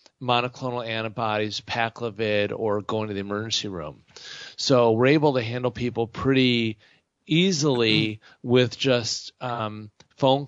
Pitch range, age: 115-130 Hz, 40-59